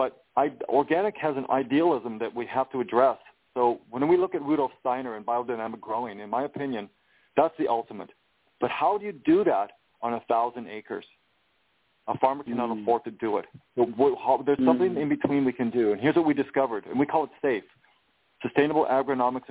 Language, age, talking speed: English, 40-59, 190 wpm